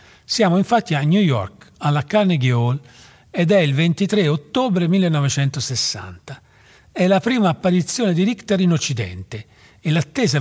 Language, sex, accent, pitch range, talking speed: Italian, male, native, 115-180 Hz, 140 wpm